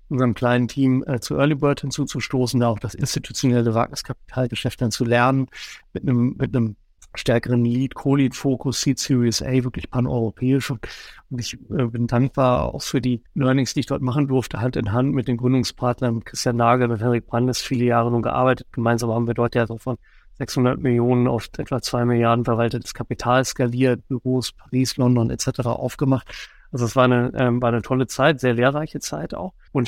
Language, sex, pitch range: German, male, 120-130 Hz